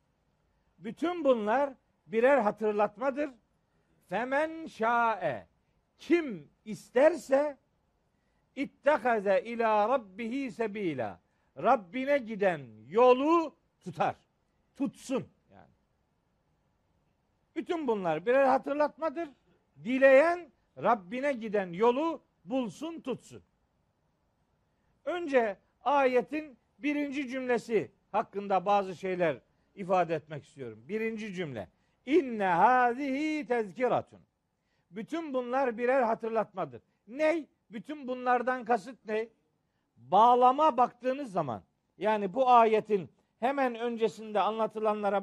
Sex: male